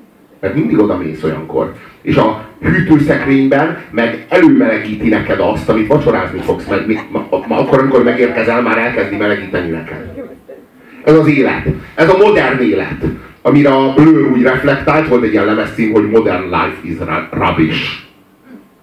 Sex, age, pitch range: male, 30-49, 115-160 Hz